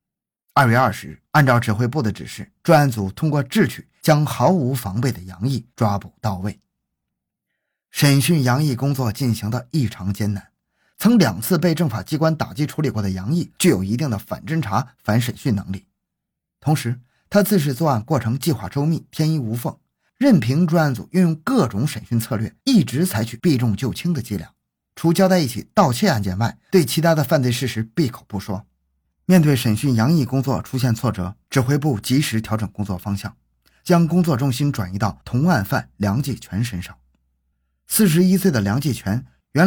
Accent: native